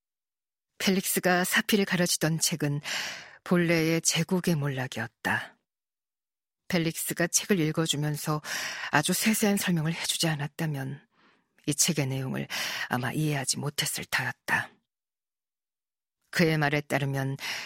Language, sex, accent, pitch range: Korean, female, native, 145-175 Hz